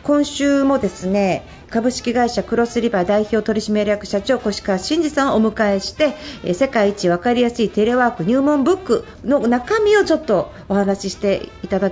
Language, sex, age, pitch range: Japanese, female, 40-59, 205-300 Hz